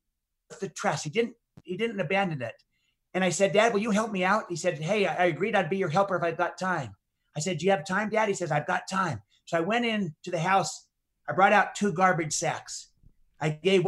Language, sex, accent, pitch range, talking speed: English, male, American, 165-195 Hz, 240 wpm